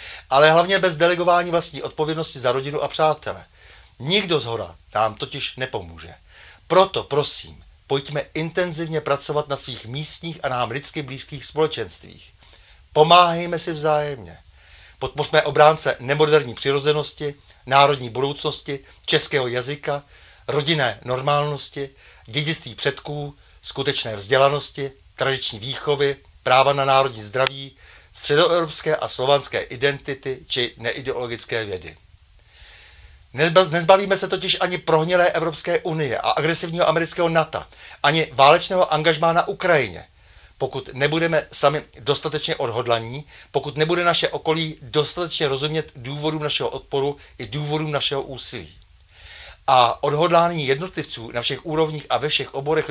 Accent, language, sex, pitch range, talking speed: native, Czech, male, 125-155 Hz, 115 wpm